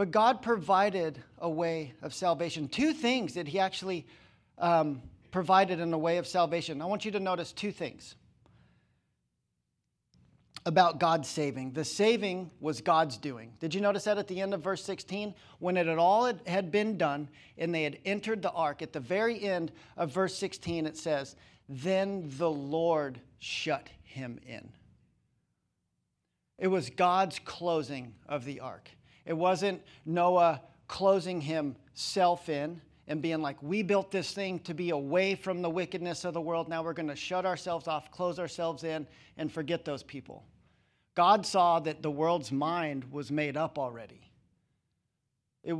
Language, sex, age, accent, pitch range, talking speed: English, male, 50-69, American, 150-185 Hz, 165 wpm